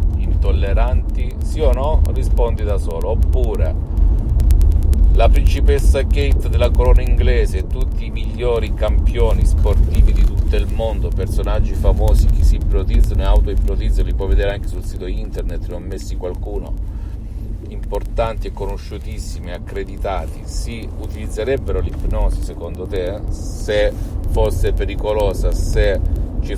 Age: 40-59